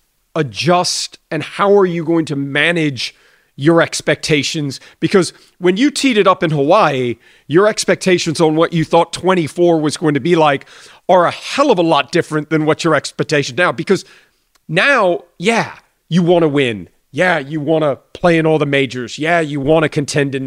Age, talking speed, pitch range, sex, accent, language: 40-59, 190 wpm, 145-180 Hz, male, American, English